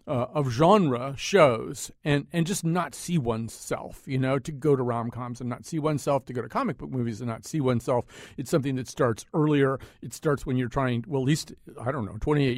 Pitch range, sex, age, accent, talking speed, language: 120-150 Hz, male, 50-69, American, 225 wpm, English